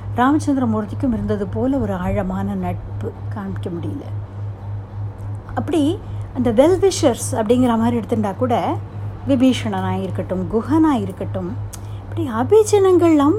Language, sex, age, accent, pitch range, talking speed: Tamil, female, 60-79, native, 100-125 Hz, 95 wpm